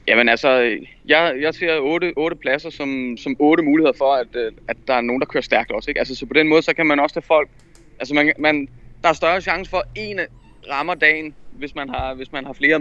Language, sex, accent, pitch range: Danish, male, native, 120-155 Hz